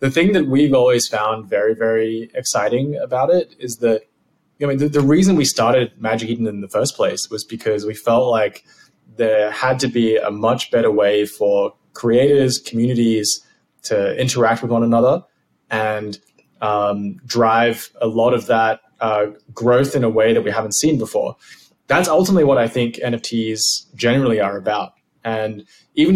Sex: male